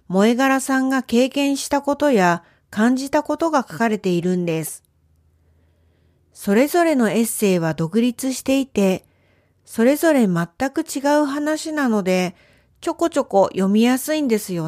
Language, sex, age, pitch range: Japanese, female, 40-59, 180-275 Hz